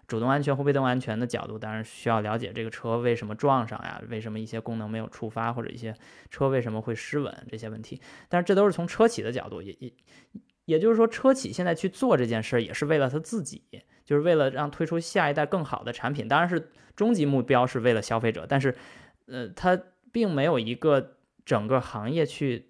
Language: Chinese